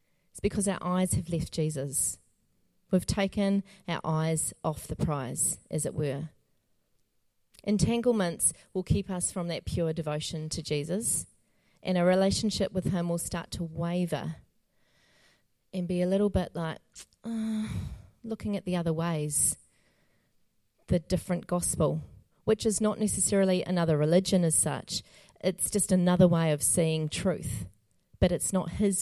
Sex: female